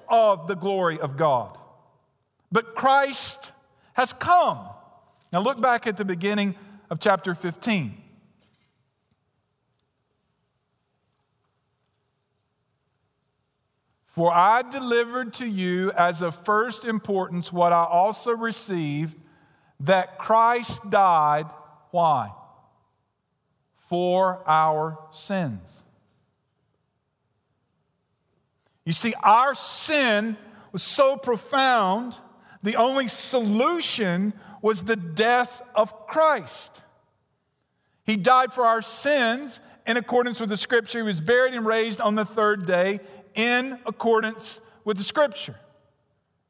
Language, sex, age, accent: English, male, 50-69, American